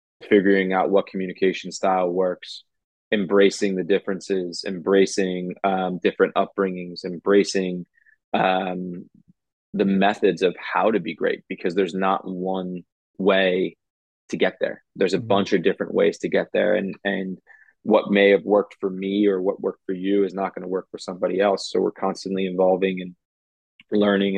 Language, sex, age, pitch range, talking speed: English, male, 20-39, 90-100 Hz, 160 wpm